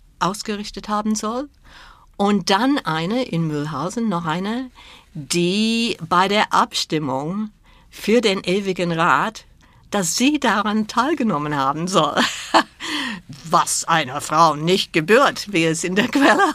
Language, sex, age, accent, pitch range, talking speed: German, female, 60-79, German, 170-220 Hz, 125 wpm